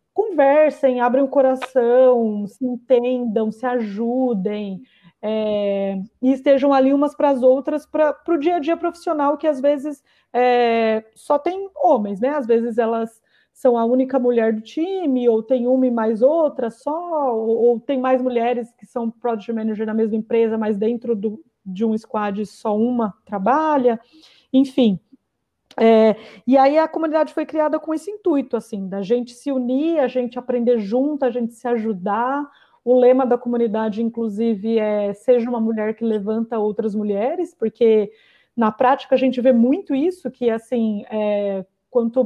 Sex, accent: female, Brazilian